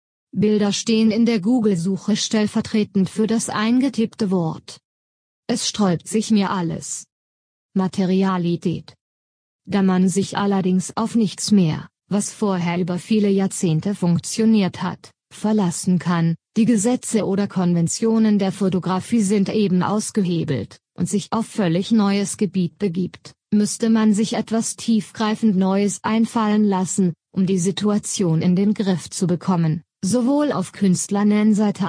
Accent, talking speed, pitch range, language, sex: German, 125 wpm, 180-215 Hz, German, female